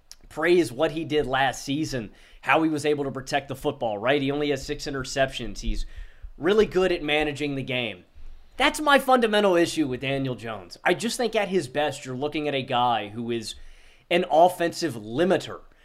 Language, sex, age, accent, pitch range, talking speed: English, male, 30-49, American, 125-160 Hz, 190 wpm